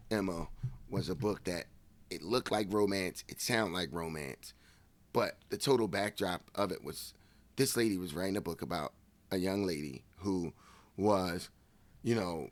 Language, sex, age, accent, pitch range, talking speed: English, male, 30-49, American, 95-120 Hz, 165 wpm